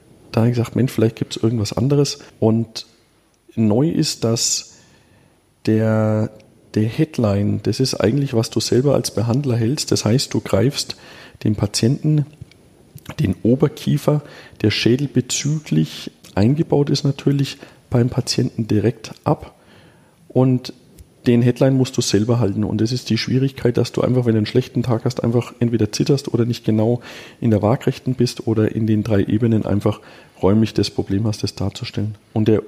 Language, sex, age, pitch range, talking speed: German, male, 40-59, 110-130 Hz, 160 wpm